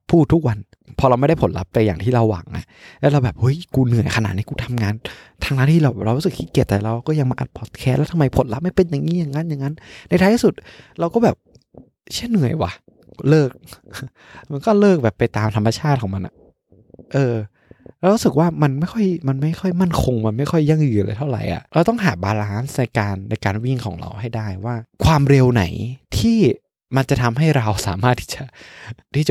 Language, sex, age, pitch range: Thai, male, 20-39, 105-145 Hz